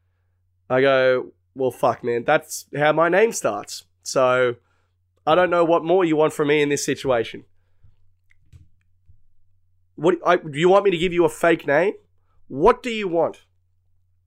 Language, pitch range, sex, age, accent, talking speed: English, 95-155 Hz, male, 20-39, Australian, 165 wpm